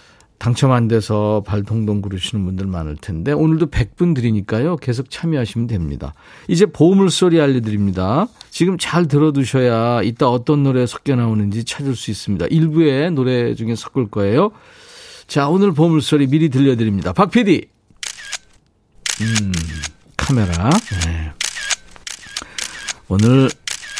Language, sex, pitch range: Korean, male, 105-155 Hz